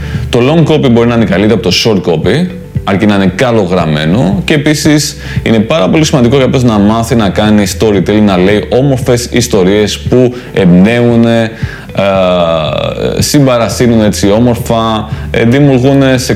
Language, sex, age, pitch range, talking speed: Greek, male, 30-49, 100-130 Hz, 145 wpm